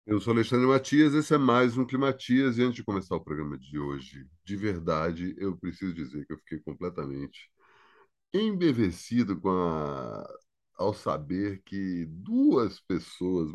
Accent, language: Brazilian, Portuguese